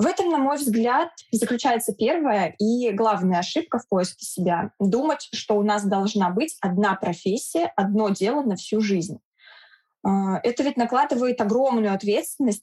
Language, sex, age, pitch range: Russian, female, 20-39, 195-240 Hz